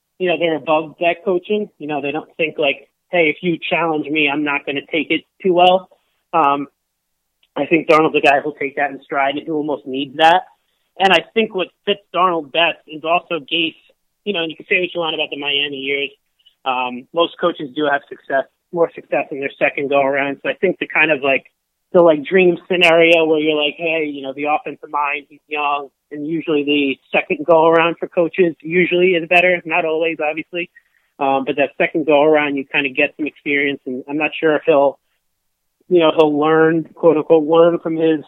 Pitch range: 145-170 Hz